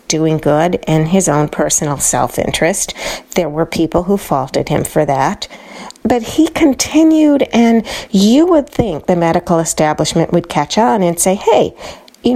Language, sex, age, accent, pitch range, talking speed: English, female, 40-59, American, 155-200 Hz, 155 wpm